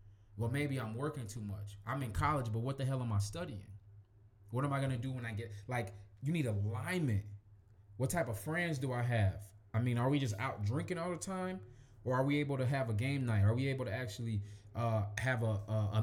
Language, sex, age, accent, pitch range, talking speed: English, male, 20-39, American, 100-130 Hz, 245 wpm